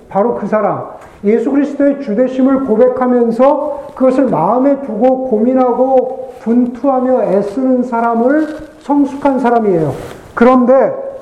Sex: male